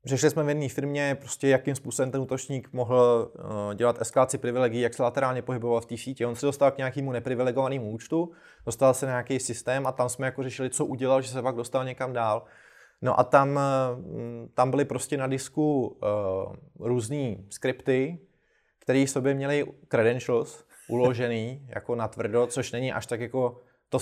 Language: Slovak